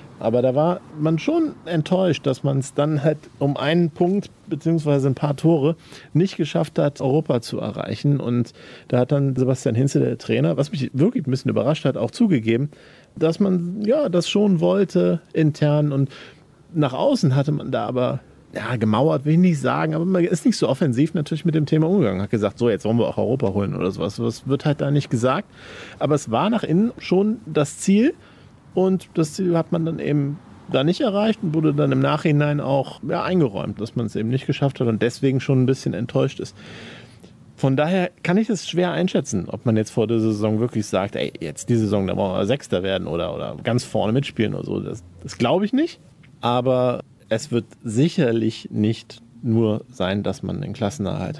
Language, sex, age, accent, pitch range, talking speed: German, male, 40-59, German, 115-160 Hz, 205 wpm